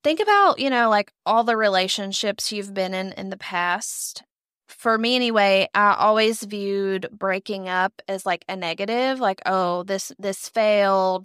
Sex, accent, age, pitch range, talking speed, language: female, American, 20-39, 190-220 Hz, 165 wpm, English